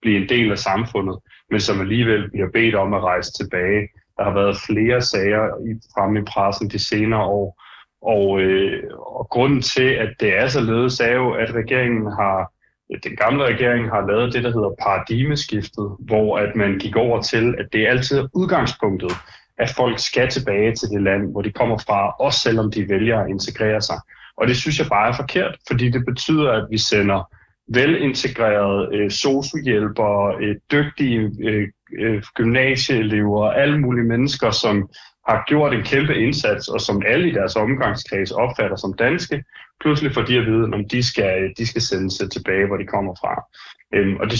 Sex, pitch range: male, 100-125 Hz